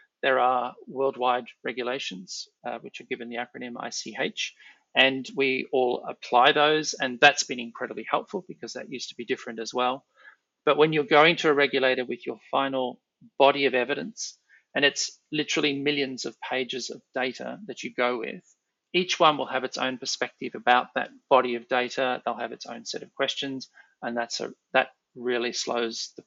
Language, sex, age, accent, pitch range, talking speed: English, male, 40-59, Australian, 125-150 Hz, 185 wpm